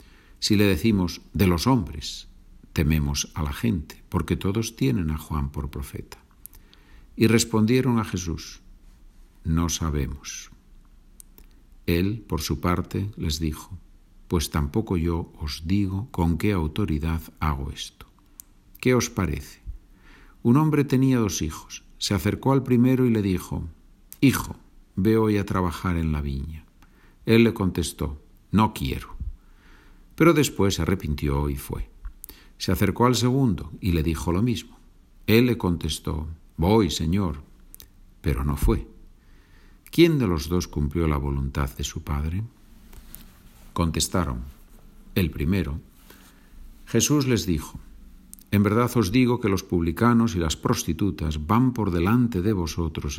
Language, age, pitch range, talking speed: Spanish, 50-69, 80-105 Hz, 135 wpm